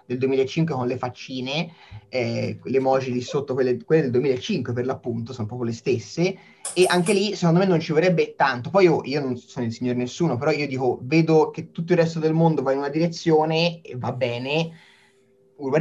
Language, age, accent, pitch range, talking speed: Italian, 20-39, native, 125-160 Hz, 210 wpm